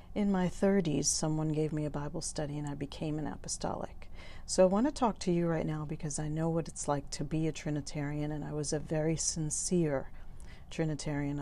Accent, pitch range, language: American, 145-175 Hz, English